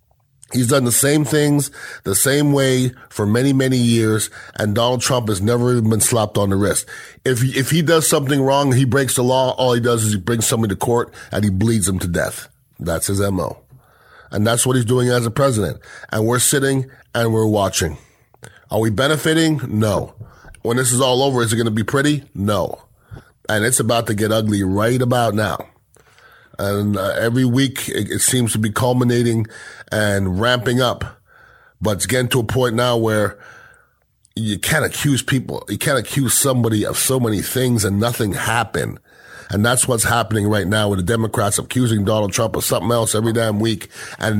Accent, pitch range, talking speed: American, 105-130 Hz, 195 wpm